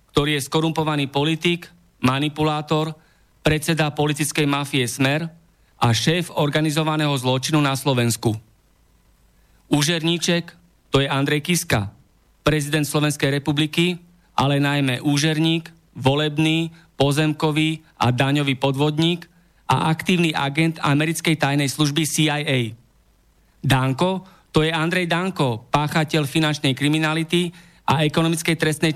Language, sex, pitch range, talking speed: Slovak, male, 135-160 Hz, 100 wpm